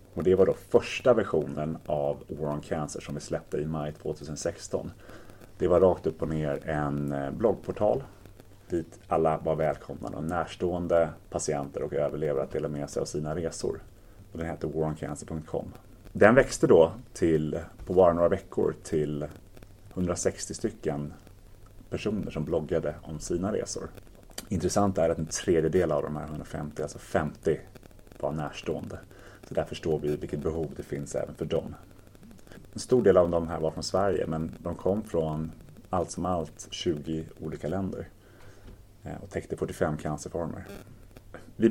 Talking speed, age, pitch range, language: 155 wpm, 30-49, 80-100 Hz, English